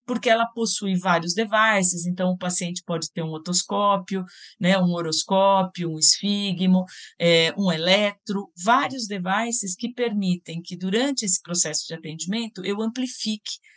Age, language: 50-69, Portuguese